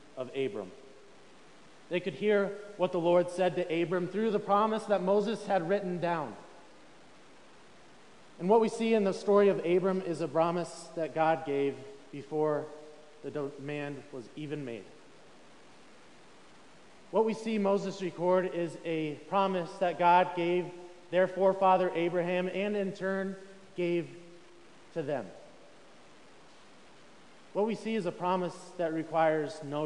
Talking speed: 140 wpm